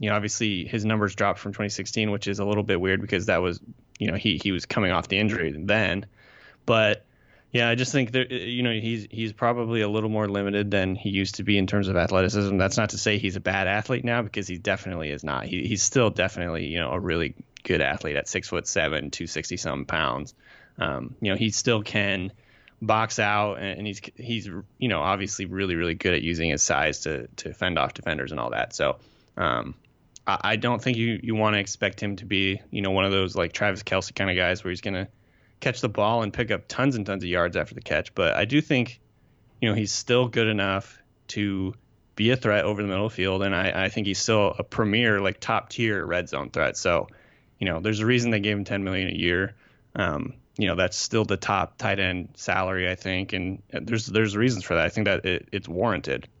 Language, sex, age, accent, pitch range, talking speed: English, male, 20-39, American, 95-110 Hz, 235 wpm